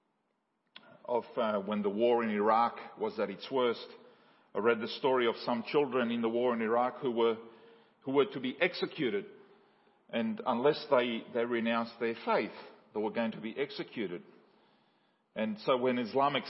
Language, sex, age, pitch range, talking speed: English, male, 40-59, 115-150 Hz, 170 wpm